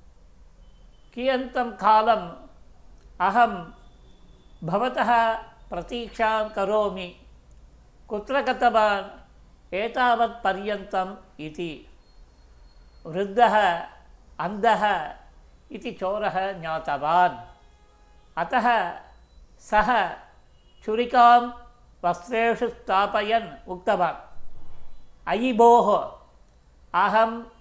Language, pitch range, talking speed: Tamil, 175-230 Hz, 40 wpm